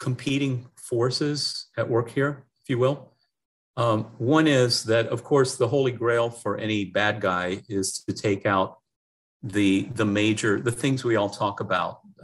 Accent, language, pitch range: American, English, 100-130 Hz